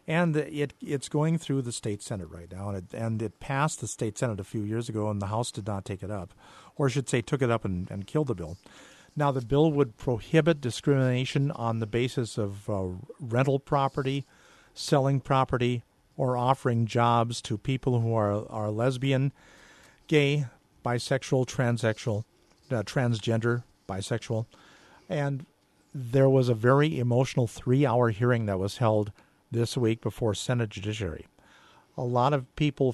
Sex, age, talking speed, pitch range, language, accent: male, 50-69, 170 wpm, 110-140 Hz, English, American